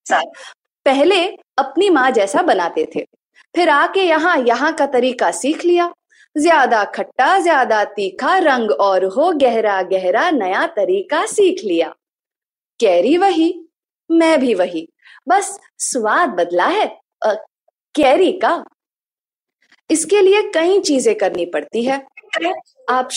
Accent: Indian